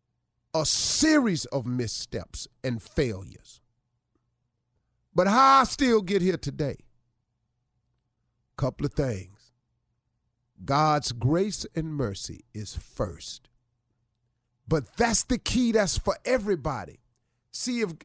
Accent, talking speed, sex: American, 105 wpm, male